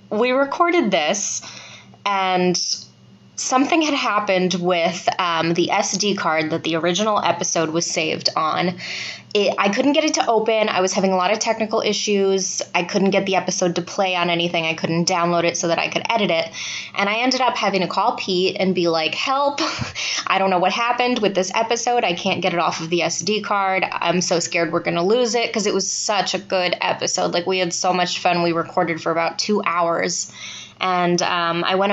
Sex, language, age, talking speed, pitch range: female, English, 20-39, 210 wpm, 170-205 Hz